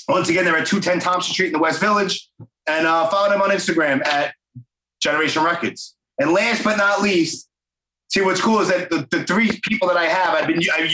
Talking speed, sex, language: 225 wpm, male, English